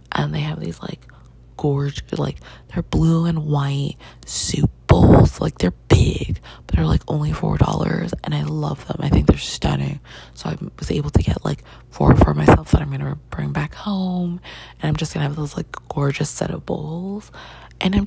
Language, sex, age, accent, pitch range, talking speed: English, female, 20-39, American, 140-195 Hz, 195 wpm